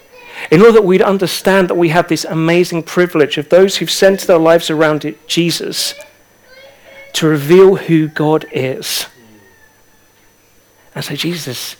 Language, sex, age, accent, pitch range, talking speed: English, male, 40-59, British, 145-180 Hz, 140 wpm